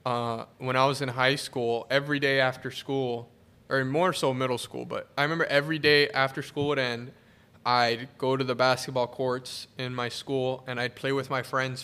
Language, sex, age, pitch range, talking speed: English, male, 10-29, 120-140 Hz, 205 wpm